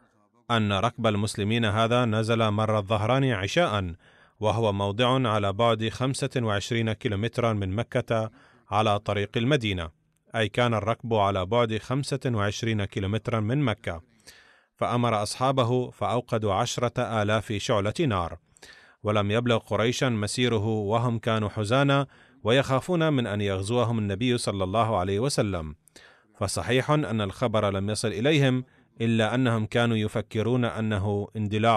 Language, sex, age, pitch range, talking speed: Arabic, male, 30-49, 105-120 Hz, 125 wpm